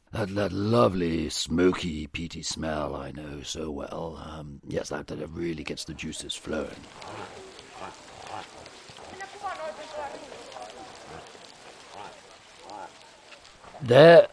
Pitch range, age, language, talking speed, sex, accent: 85-125 Hz, 60-79, English, 85 wpm, male, British